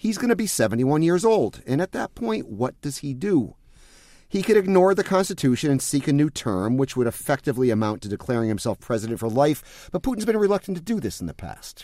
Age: 40-59